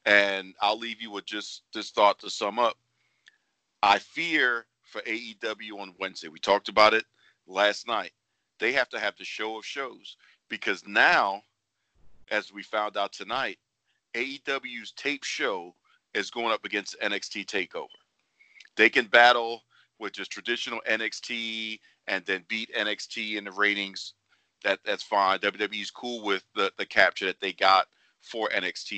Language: English